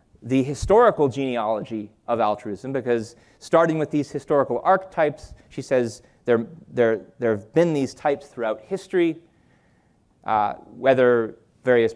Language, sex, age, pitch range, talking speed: English, male, 30-49, 120-165 Hz, 120 wpm